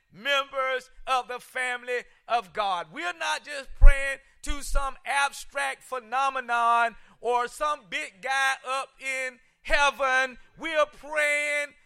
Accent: American